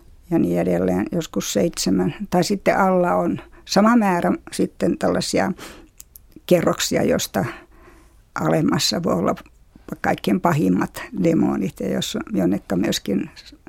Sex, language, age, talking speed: female, Finnish, 60-79, 105 wpm